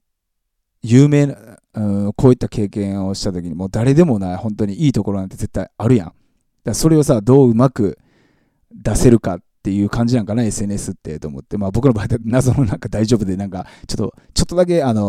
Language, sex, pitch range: Japanese, male, 100-140 Hz